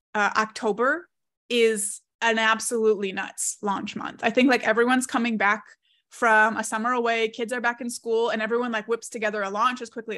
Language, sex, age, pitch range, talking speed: English, female, 20-39, 215-250 Hz, 190 wpm